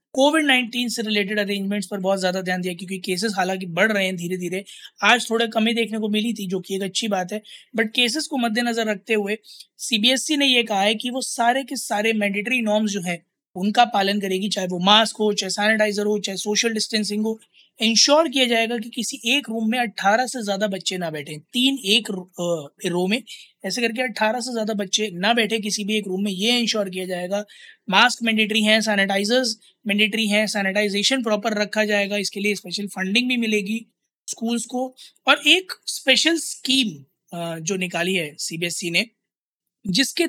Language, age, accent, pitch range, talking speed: Hindi, 20-39, native, 200-255 Hz, 195 wpm